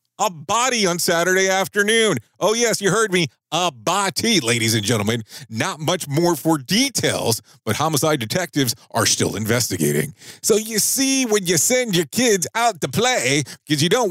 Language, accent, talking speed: English, American, 170 wpm